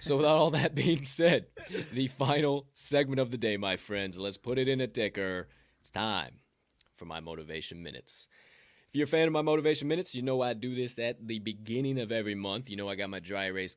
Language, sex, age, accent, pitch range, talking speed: English, male, 20-39, American, 95-125 Hz, 225 wpm